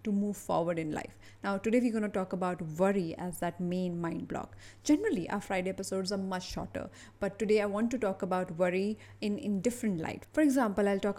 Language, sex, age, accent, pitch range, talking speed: English, female, 30-49, Indian, 180-220 Hz, 220 wpm